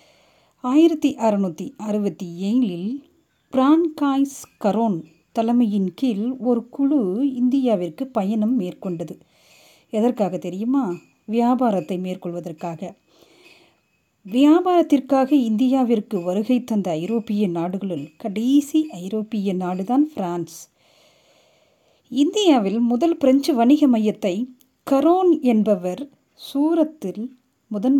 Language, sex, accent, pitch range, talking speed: Tamil, female, native, 190-270 Hz, 75 wpm